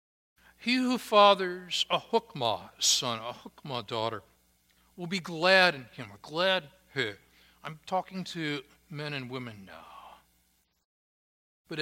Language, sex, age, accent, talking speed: English, male, 60-79, American, 125 wpm